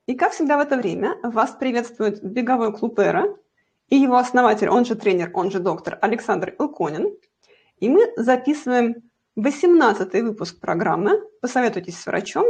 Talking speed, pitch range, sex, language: 150 wpm, 200-285 Hz, female, Russian